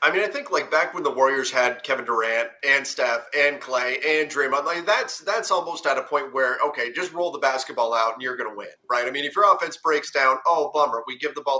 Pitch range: 125-200 Hz